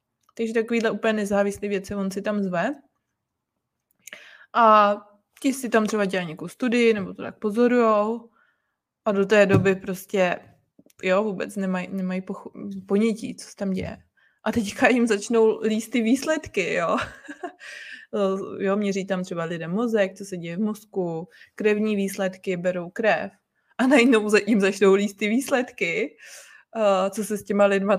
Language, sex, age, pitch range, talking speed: Czech, female, 20-39, 190-225 Hz, 150 wpm